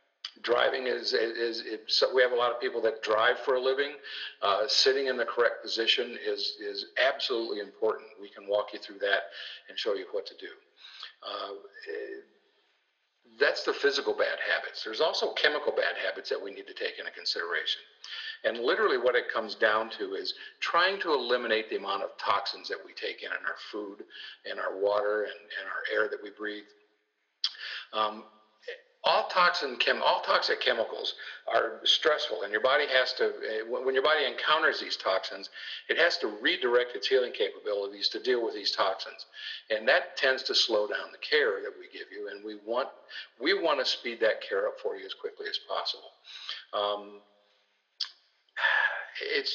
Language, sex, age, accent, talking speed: English, male, 50-69, American, 180 wpm